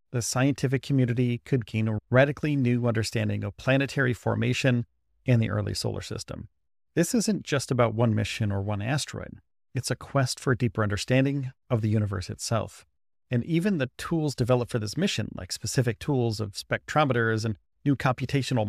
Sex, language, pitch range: male, English, 110-140 Hz